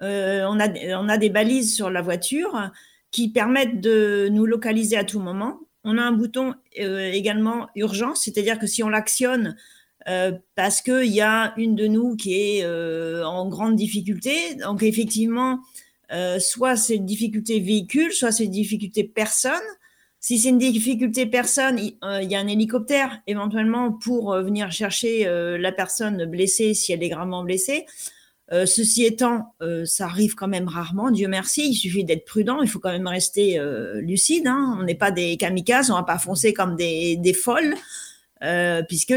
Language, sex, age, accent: French, female, 40-59, French